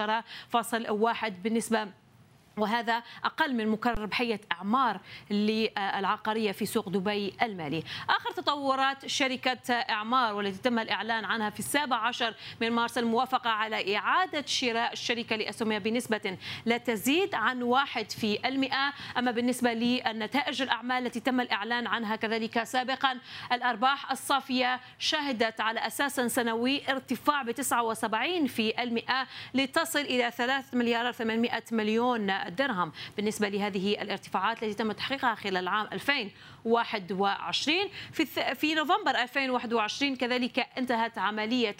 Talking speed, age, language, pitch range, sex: 120 wpm, 30-49, Arabic, 215-250 Hz, female